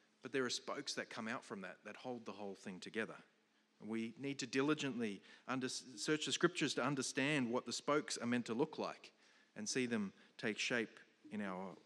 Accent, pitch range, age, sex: Australian, 120-160 Hz, 40-59, male